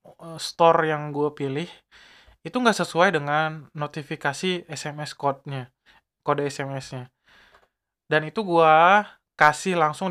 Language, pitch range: Indonesian, 145-170 Hz